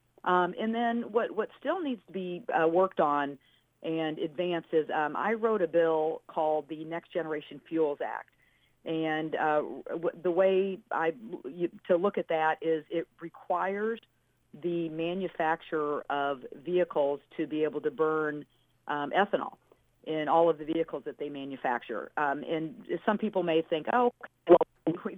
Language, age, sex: English, 50-69, female